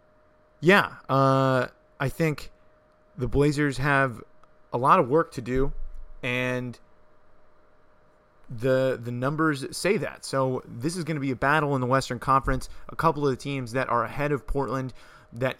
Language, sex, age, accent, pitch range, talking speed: English, male, 30-49, American, 120-135 Hz, 160 wpm